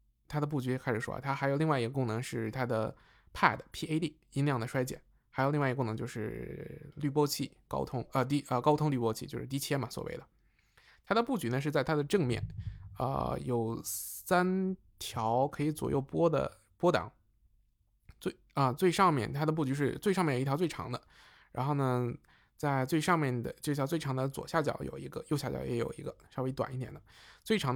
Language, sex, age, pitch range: Chinese, male, 20-39, 120-150 Hz